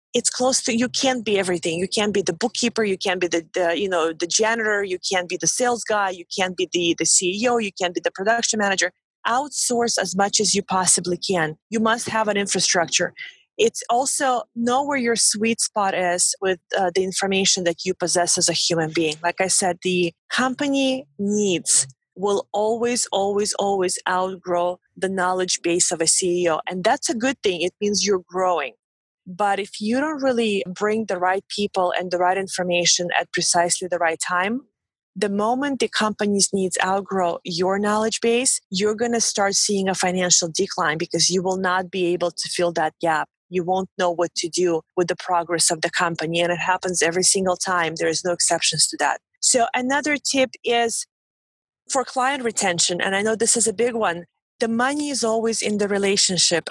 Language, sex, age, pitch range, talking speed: English, female, 20-39, 175-225 Hz, 200 wpm